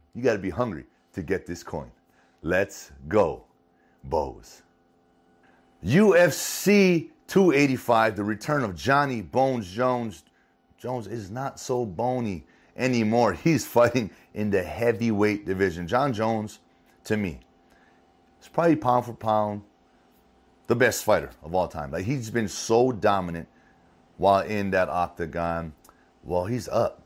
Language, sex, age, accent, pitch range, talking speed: English, male, 30-49, American, 85-115 Hz, 130 wpm